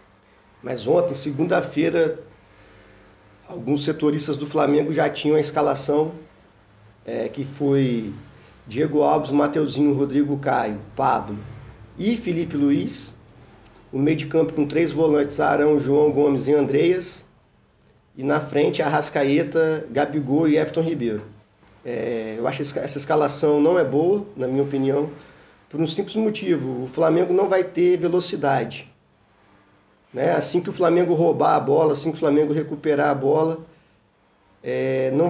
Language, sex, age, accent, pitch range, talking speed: Portuguese, male, 40-59, Brazilian, 130-160 Hz, 140 wpm